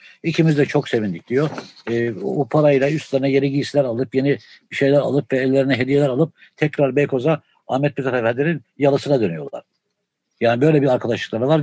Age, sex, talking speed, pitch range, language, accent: 60-79, male, 160 wpm, 125-150 Hz, Turkish, native